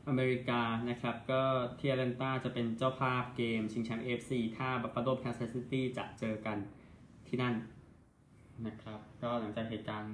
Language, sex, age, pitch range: Thai, male, 20-39, 110-130 Hz